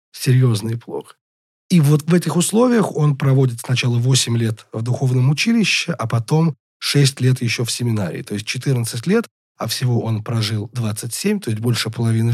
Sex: male